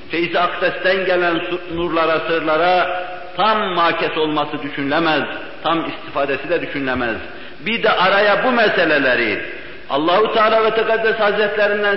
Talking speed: 110 wpm